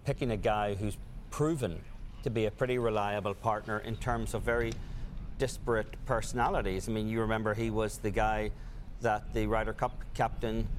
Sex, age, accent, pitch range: male, 40-59, Irish, 105-120 Hz